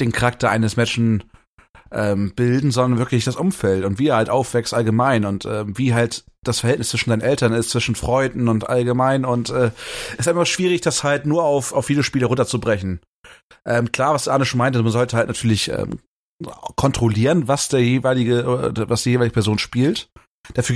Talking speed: 190 wpm